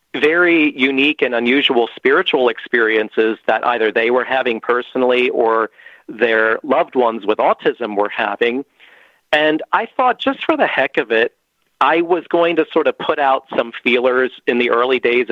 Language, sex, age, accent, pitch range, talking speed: English, male, 40-59, American, 120-155 Hz, 170 wpm